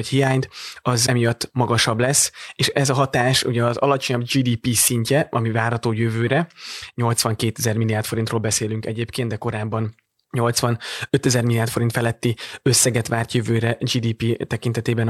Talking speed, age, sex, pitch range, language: 140 wpm, 20-39, male, 115-125 Hz, Hungarian